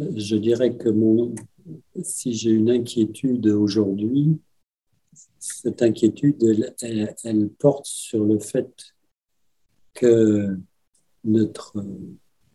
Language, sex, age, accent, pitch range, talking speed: French, male, 50-69, French, 105-125 Hz, 85 wpm